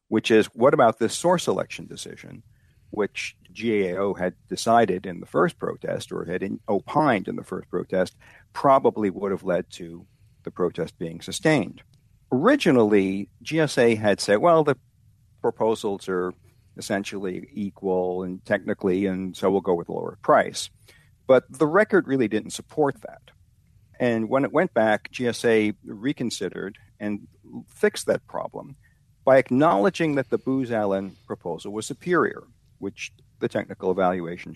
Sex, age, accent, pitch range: male, 50-69, American, 95-120 Hz